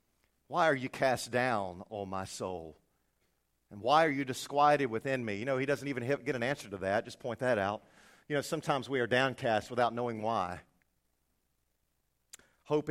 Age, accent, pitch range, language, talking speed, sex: 50-69, American, 110-165 Hz, English, 180 wpm, male